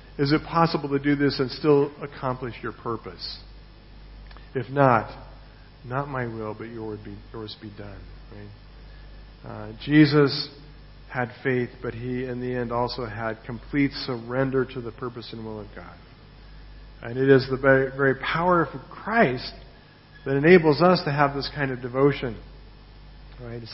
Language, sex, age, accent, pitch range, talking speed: English, male, 50-69, American, 120-150 Hz, 150 wpm